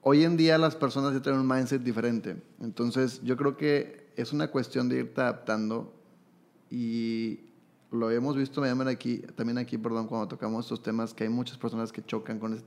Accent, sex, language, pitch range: Mexican, male, Spanish, 120-145 Hz